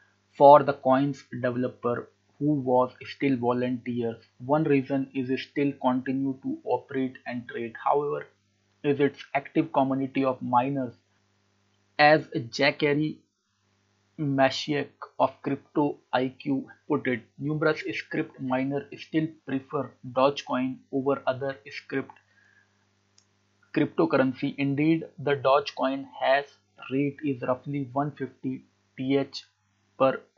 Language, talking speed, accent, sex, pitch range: English, 105 wpm, Indian, male, 125-140 Hz